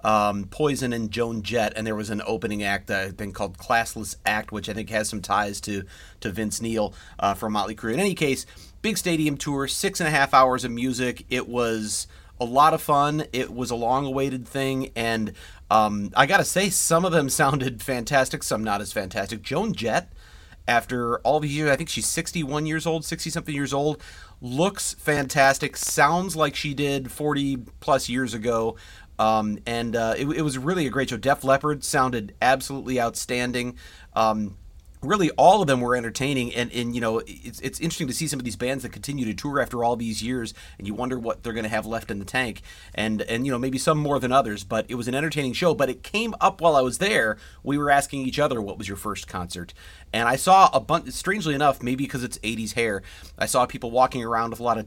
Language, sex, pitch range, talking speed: English, male, 110-140 Hz, 220 wpm